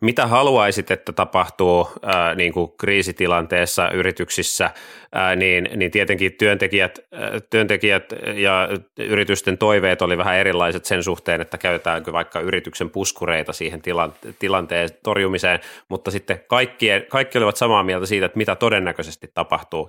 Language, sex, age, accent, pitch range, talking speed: Finnish, male, 30-49, native, 90-105 Hz, 135 wpm